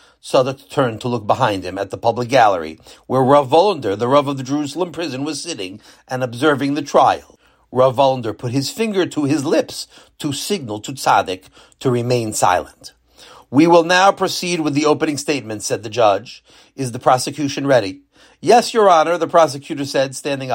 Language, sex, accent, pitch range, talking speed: English, male, American, 130-180 Hz, 180 wpm